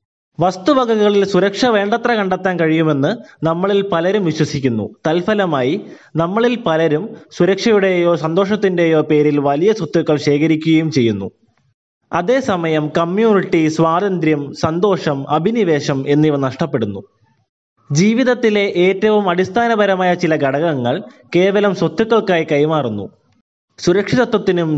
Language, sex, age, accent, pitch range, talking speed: Malayalam, male, 20-39, native, 145-195 Hz, 80 wpm